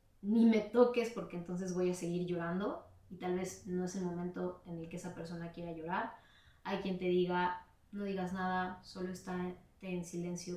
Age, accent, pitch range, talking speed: 20-39, Mexican, 175-200 Hz, 195 wpm